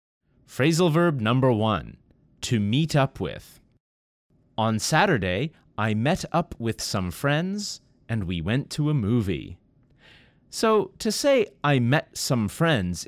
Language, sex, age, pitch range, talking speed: English, male, 30-49, 105-165 Hz, 135 wpm